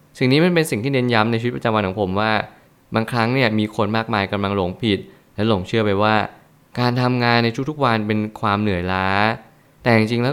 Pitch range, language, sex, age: 105-120 Hz, Thai, male, 20-39